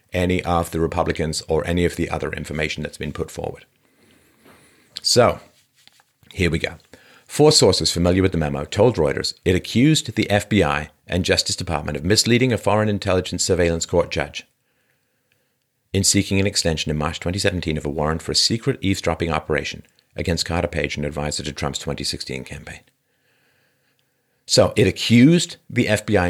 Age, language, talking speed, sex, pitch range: 50-69, English, 160 wpm, male, 80-120 Hz